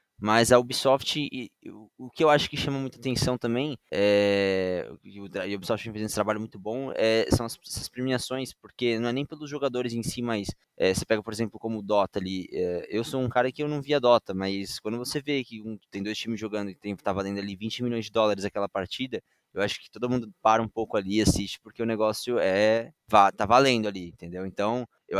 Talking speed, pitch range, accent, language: 220 wpm, 100-125 Hz, Brazilian, Portuguese